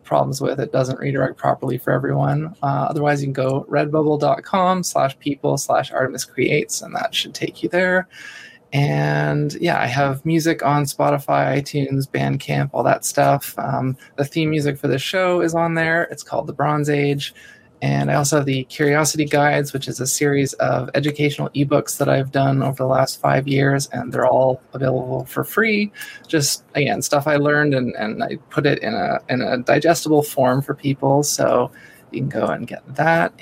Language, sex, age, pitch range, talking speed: English, male, 20-39, 135-155 Hz, 185 wpm